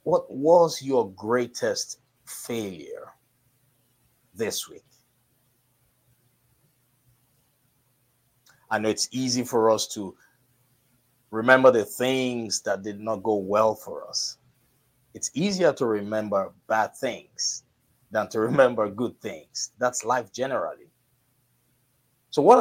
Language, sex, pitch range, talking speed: English, male, 120-130 Hz, 105 wpm